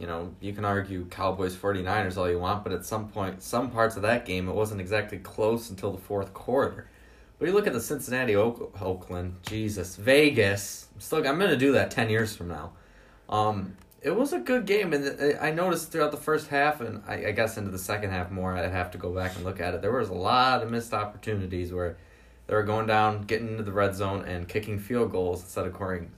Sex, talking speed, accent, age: male, 230 wpm, American, 20-39